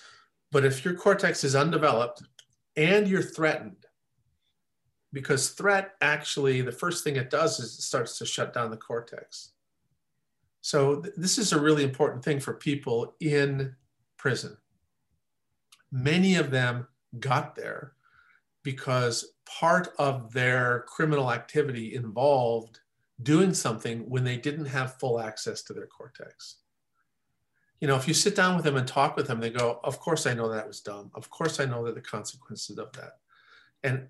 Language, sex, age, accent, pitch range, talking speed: English, male, 50-69, American, 125-155 Hz, 160 wpm